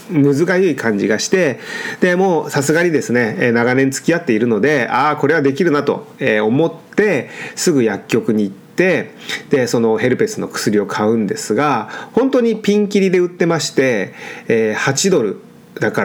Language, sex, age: Japanese, male, 40-59